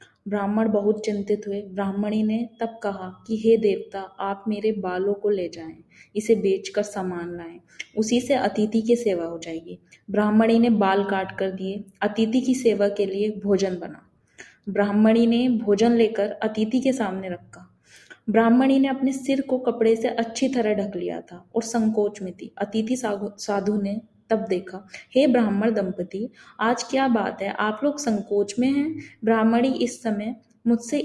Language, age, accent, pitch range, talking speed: Hindi, 20-39, native, 200-235 Hz, 165 wpm